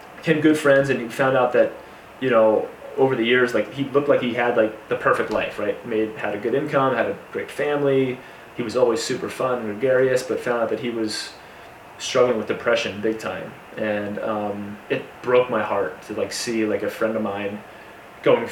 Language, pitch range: English, 110-130 Hz